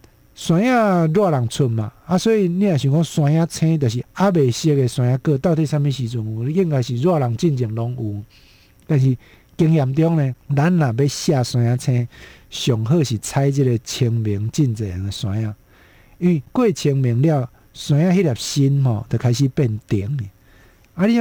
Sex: male